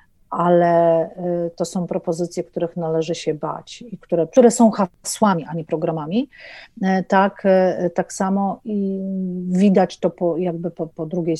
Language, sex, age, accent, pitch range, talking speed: Polish, female, 40-59, native, 175-220 Hz, 140 wpm